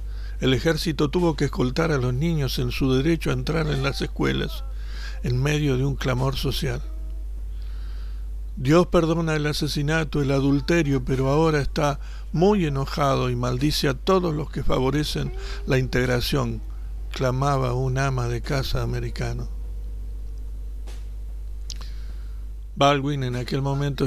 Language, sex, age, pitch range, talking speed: Spanish, male, 60-79, 85-140 Hz, 130 wpm